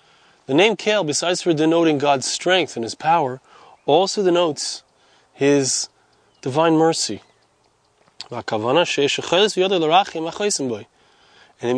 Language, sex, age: English, male, 30-49